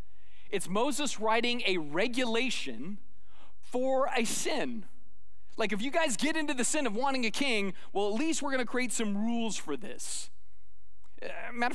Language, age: English, 30-49